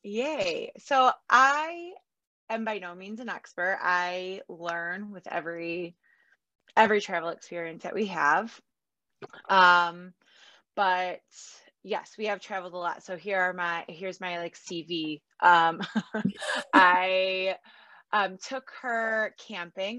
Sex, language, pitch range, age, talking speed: female, English, 170-215 Hz, 20-39, 125 wpm